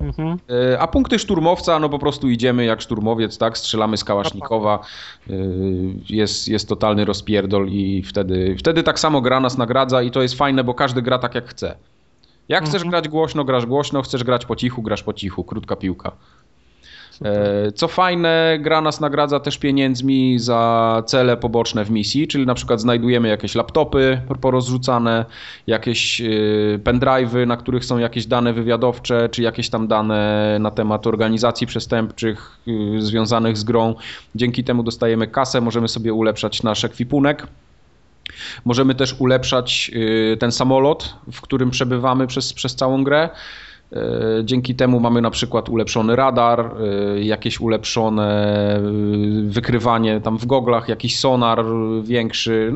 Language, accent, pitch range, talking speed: Polish, native, 110-130 Hz, 140 wpm